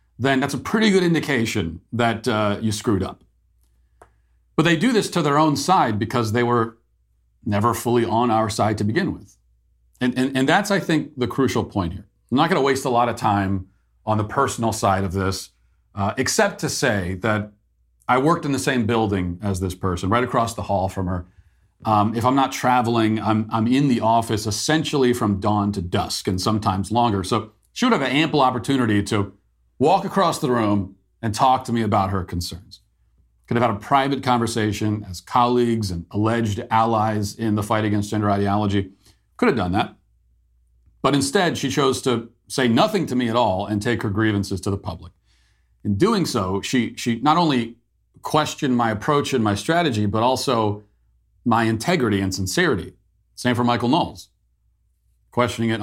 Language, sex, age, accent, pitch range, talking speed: English, male, 40-59, American, 100-125 Hz, 190 wpm